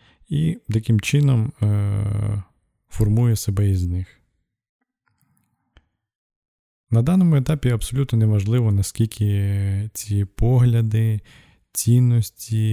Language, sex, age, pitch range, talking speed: Ukrainian, male, 20-39, 95-115 Hz, 80 wpm